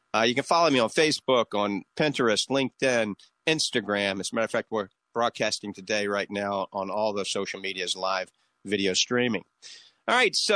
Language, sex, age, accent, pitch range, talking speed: English, male, 50-69, American, 105-145 Hz, 180 wpm